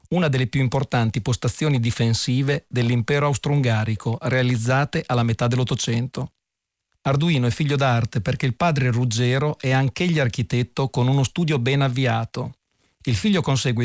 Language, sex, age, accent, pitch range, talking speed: Italian, male, 40-59, native, 120-140 Hz, 135 wpm